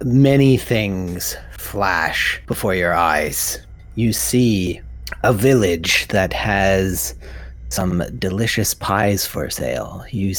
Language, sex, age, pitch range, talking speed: English, male, 30-49, 85-110 Hz, 105 wpm